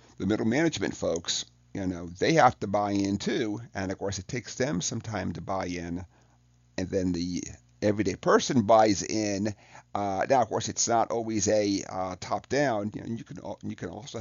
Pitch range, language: 90-110 Hz, English